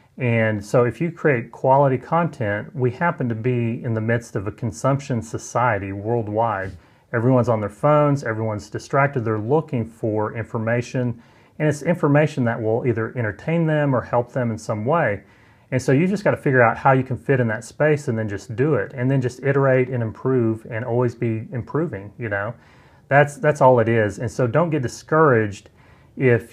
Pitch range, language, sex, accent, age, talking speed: 110-140 Hz, English, male, American, 30-49, 195 wpm